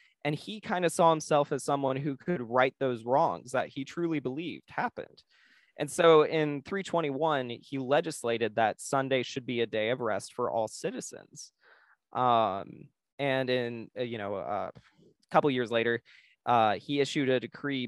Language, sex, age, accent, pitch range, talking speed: English, male, 20-39, American, 120-150 Hz, 165 wpm